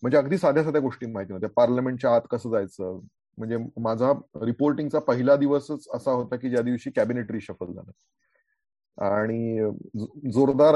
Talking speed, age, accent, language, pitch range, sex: 145 wpm, 30-49, native, Marathi, 110-140 Hz, male